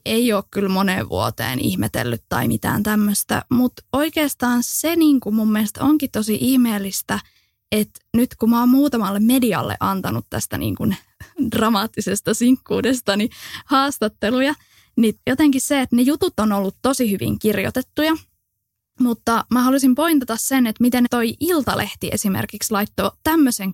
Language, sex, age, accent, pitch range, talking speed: English, female, 10-29, Finnish, 205-275 Hz, 130 wpm